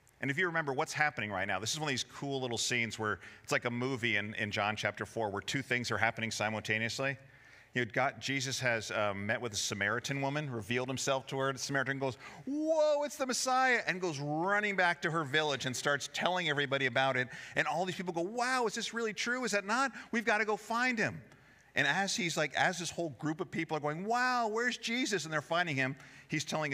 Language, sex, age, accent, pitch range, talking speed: English, male, 50-69, American, 115-155 Hz, 240 wpm